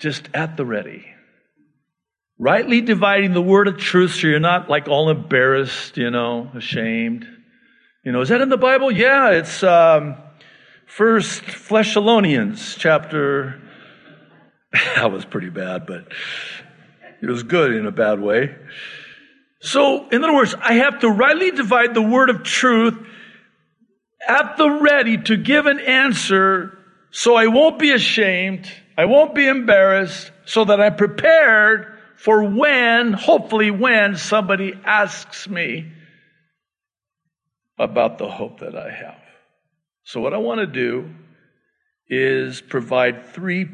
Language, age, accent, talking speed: English, 50-69, American, 135 wpm